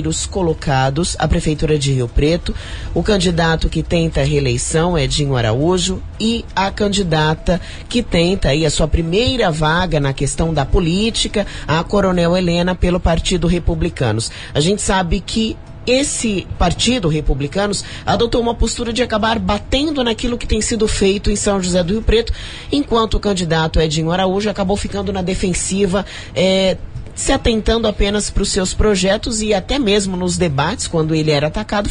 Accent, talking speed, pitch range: Brazilian, 165 wpm, 160-210 Hz